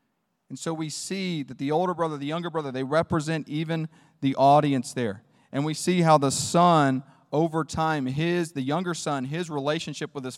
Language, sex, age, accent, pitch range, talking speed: English, male, 30-49, American, 130-155 Hz, 190 wpm